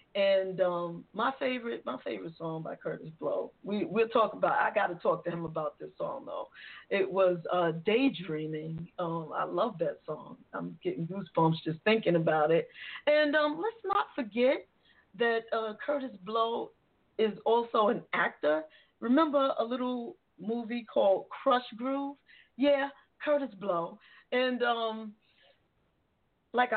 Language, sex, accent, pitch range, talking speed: English, female, American, 190-265 Hz, 145 wpm